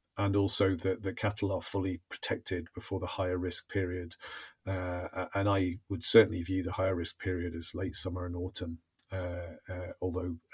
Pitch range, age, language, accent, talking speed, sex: 90-105 Hz, 40-59, English, British, 175 wpm, male